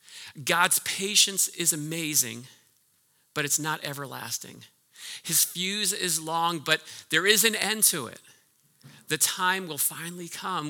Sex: male